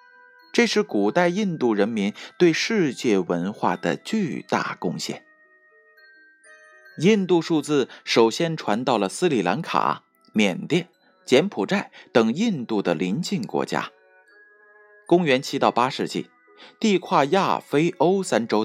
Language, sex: Chinese, male